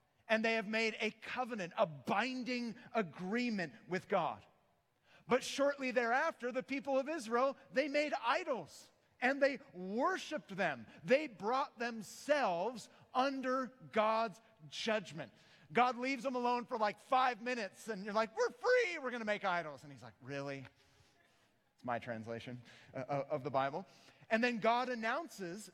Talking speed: 145 wpm